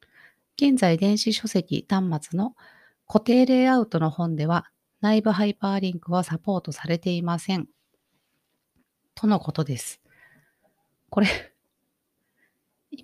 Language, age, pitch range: Japanese, 40-59, 160-225 Hz